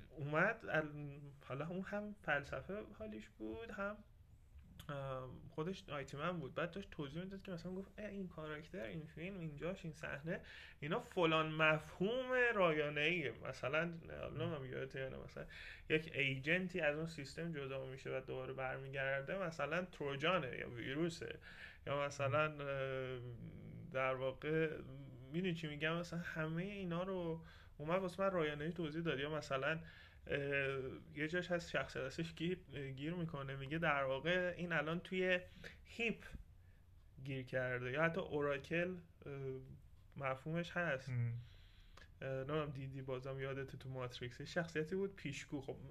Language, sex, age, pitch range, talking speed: Persian, male, 30-49, 135-170 Hz, 125 wpm